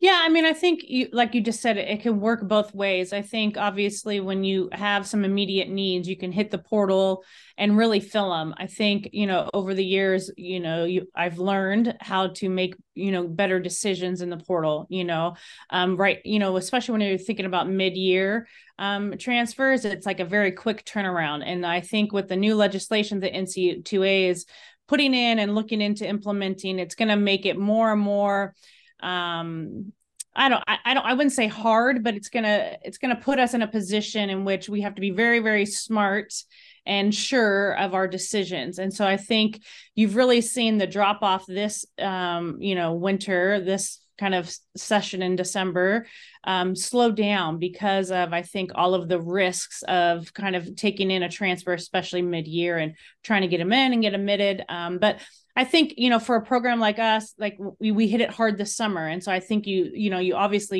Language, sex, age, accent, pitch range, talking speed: English, female, 30-49, American, 185-220 Hz, 210 wpm